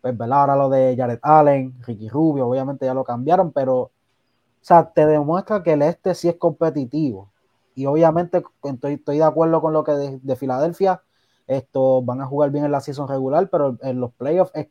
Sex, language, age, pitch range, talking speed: male, Spanish, 20-39, 125-155 Hz, 195 wpm